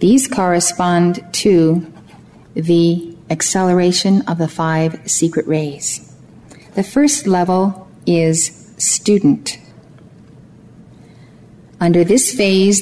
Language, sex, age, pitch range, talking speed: English, female, 50-69, 160-200 Hz, 85 wpm